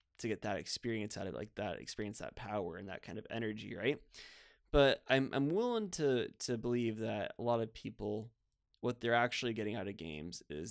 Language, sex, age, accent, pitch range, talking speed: English, male, 20-39, American, 110-135 Hz, 205 wpm